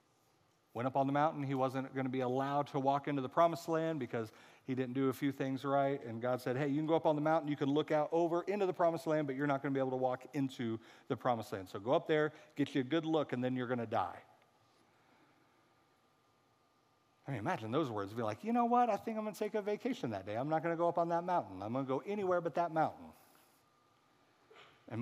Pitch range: 120-160 Hz